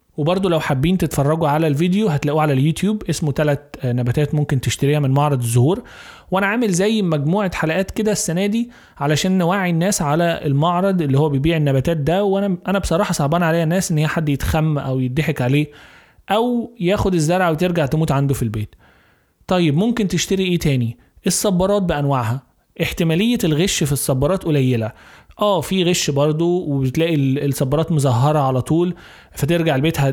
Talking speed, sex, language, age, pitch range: 155 wpm, male, Arabic, 20-39, 145-185 Hz